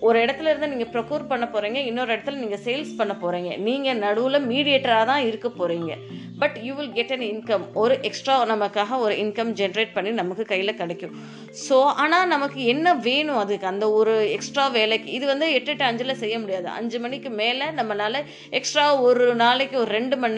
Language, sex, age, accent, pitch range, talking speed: Tamil, female, 20-39, native, 205-260 Hz, 185 wpm